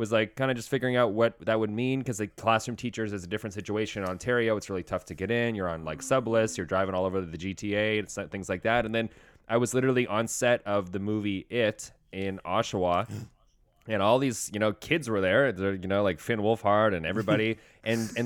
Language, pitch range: English, 95-115 Hz